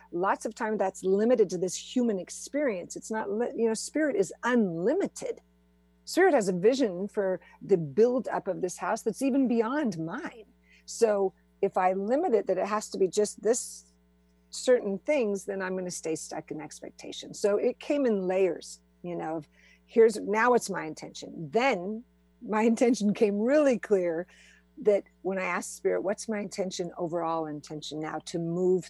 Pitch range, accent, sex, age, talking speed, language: 175-235 Hz, American, female, 50-69, 175 wpm, English